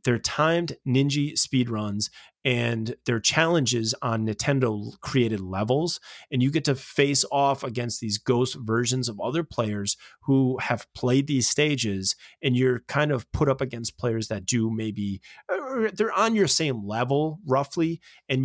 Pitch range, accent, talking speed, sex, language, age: 110-135 Hz, American, 155 wpm, male, English, 30-49